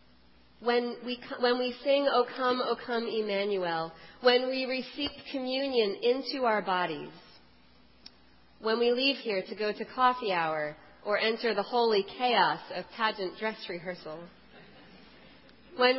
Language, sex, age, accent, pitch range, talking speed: English, female, 40-59, American, 185-255 Hz, 135 wpm